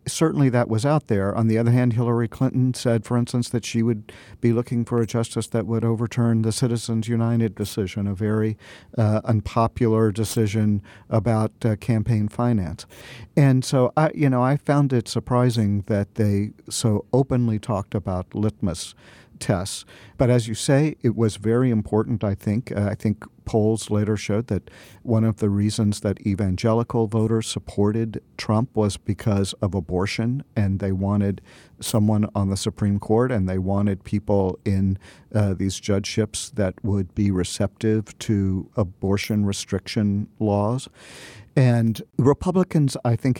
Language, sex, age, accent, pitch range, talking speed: English, male, 50-69, American, 100-120 Hz, 155 wpm